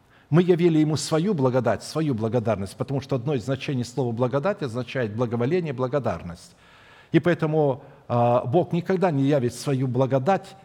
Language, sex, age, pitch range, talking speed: Russian, male, 60-79, 115-165 Hz, 140 wpm